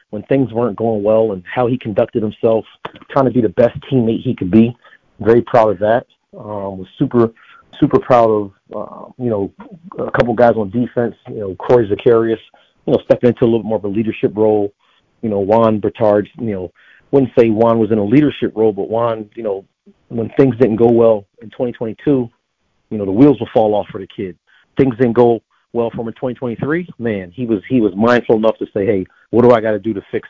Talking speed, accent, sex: 225 wpm, American, male